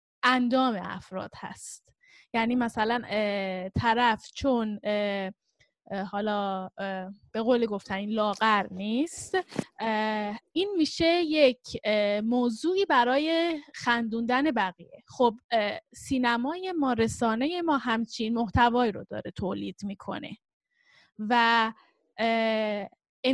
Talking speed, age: 105 wpm, 10-29